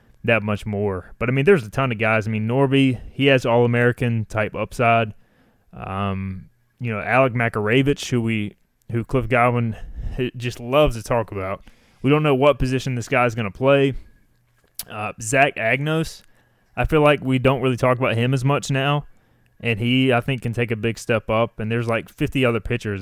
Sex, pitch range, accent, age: male, 110-130 Hz, American, 20-39